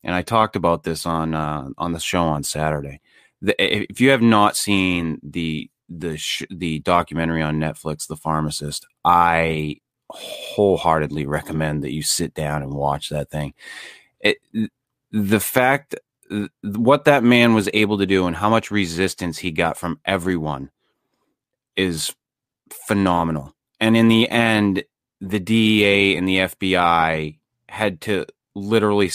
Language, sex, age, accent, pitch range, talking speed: English, male, 30-49, American, 80-105 Hz, 145 wpm